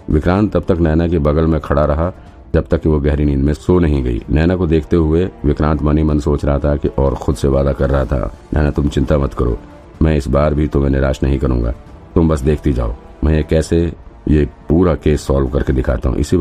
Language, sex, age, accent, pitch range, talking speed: Hindi, male, 50-69, native, 70-80 Hz, 240 wpm